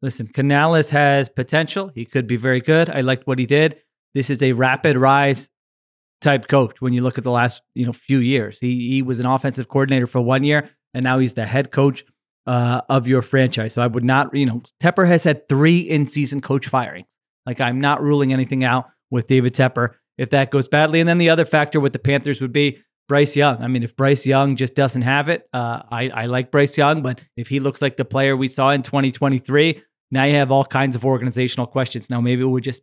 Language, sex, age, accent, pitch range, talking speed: English, male, 30-49, American, 125-145 Hz, 230 wpm